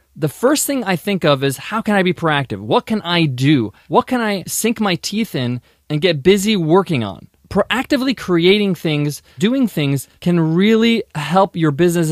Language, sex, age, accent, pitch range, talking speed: English, male, 20-39, American, 150-205 Hz, 190 wpm